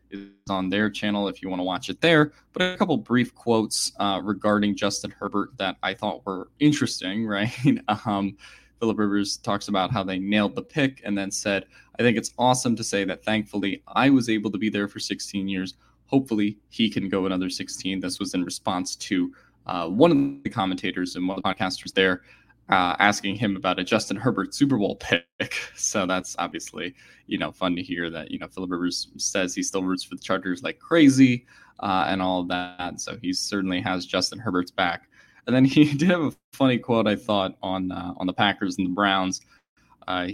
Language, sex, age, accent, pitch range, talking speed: English, male, 20-39, American, 95-115 Hz, 210 wpm